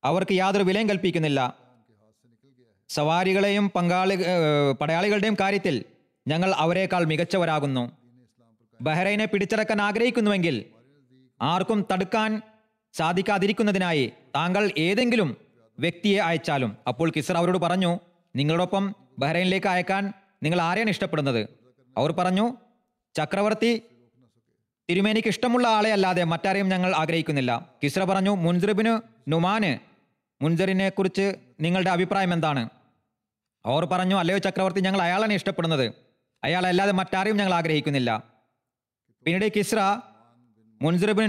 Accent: native